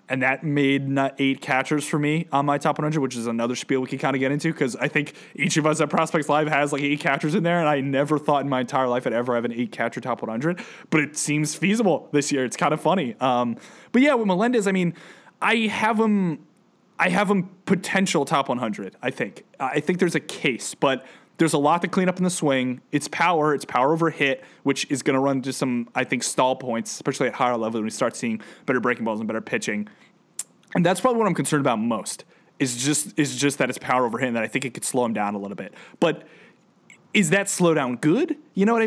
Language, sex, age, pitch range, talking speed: English, male, 20-39, 130-175 Hz, 250 wpm